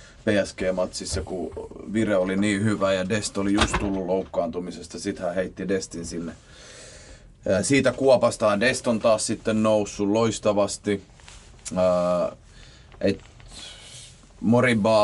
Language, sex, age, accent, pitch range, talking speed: Finnish, male, 30-49, native, 95-110 Hz, 100 wpm